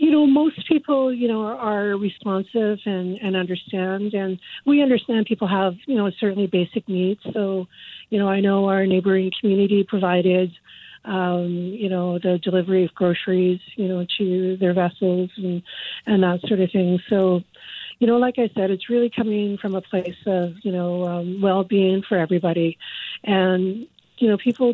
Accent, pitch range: American, 180-205 Hz